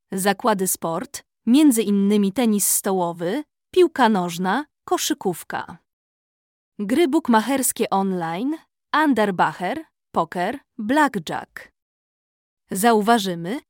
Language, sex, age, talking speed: Polish, female, 20-39, 70 wpm